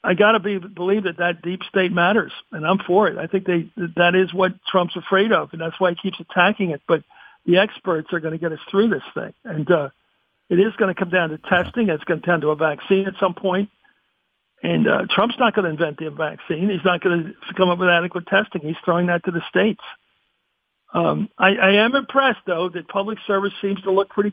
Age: 60-79